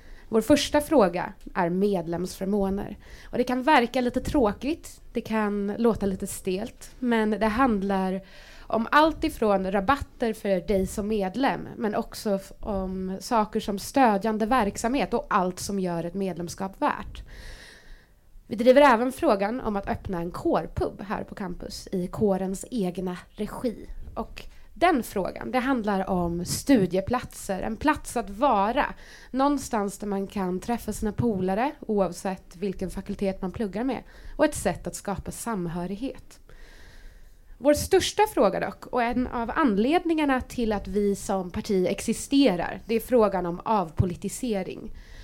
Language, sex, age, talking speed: English, female, 20-39, 140 wpm